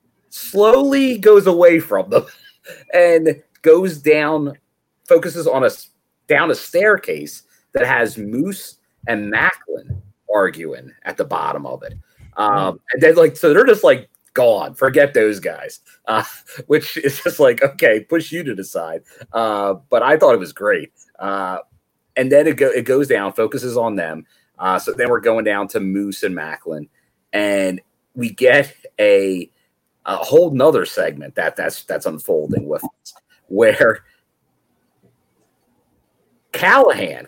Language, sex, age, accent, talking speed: English, male, 30-49, American, 145 wpm